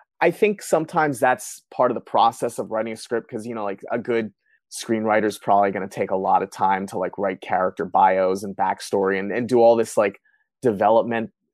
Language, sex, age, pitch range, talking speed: English, male, 20-39, 105-120 Hz, 220 wpm